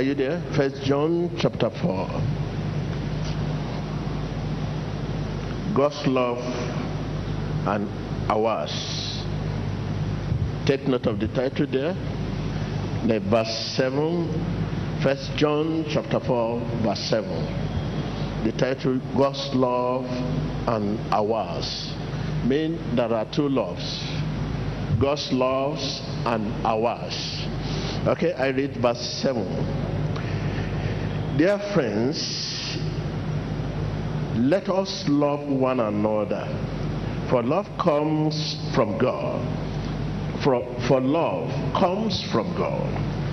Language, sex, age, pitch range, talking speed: English, male, 60-79, 125-150 Hz, 90 wpm